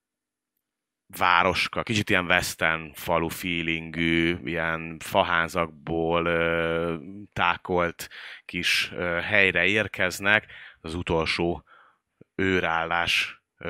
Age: 30-49